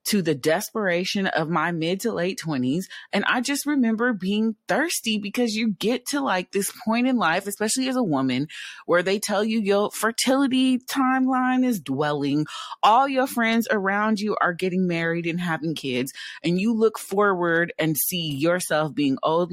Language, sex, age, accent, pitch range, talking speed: English, female, 30-49, American, 150-215 Hz, 175 wpm